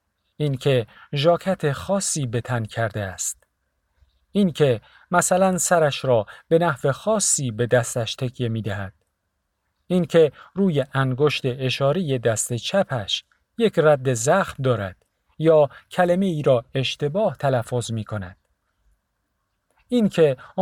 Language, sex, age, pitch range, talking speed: Persian, male, 50-69, 120-165 Hz, 110 wpm